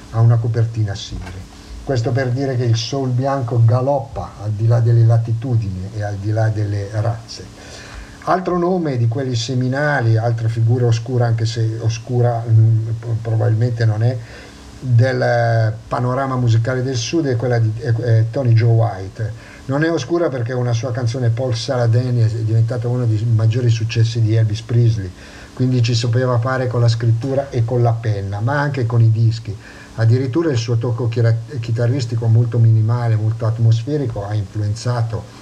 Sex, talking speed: male, 165 wpm